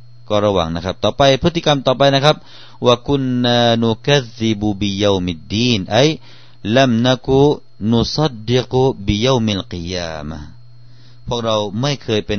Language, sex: Thai, male